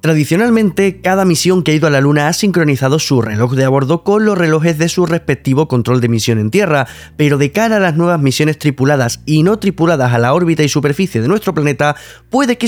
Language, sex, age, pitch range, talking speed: Spanish, male, 20-39, 130-185 Hz, 225 wpm